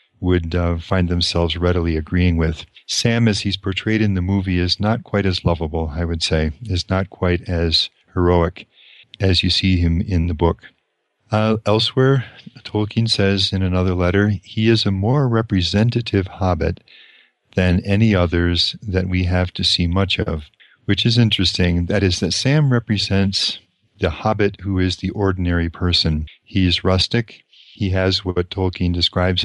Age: 40-59